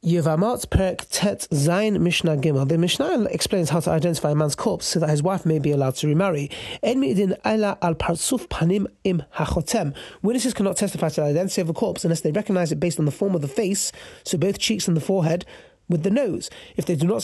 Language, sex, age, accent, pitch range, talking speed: English, male, 30-49, British, 165-200 Hz, 180 wpm